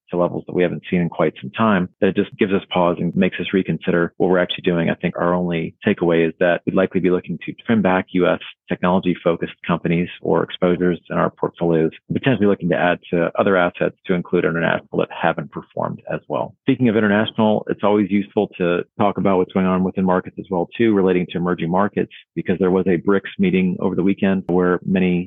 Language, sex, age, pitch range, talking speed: English, male, 40-59, 85-100 Hz, 220 wpm